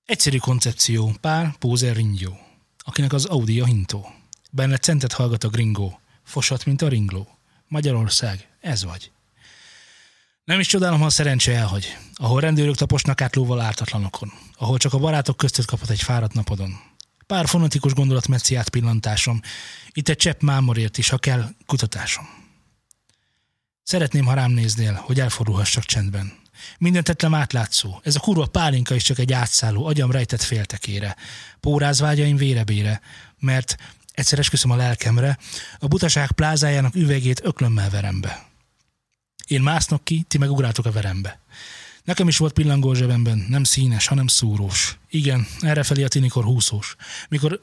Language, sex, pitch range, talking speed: Hungarian, male, 115-145 Hz, 140 wpm